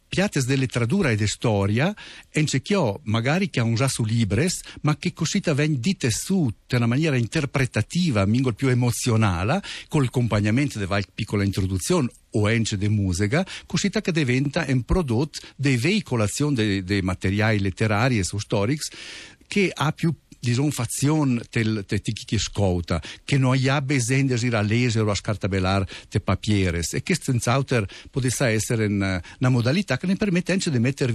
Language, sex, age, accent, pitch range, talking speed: Italian, male, 60-79, native, 100-140 Hz, 160 wpm